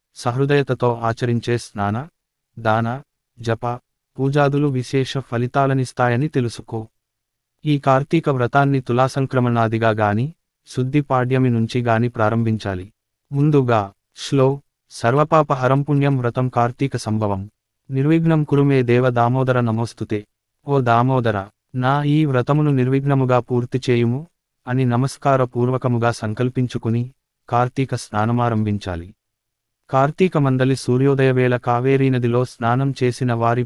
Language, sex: Telugu, male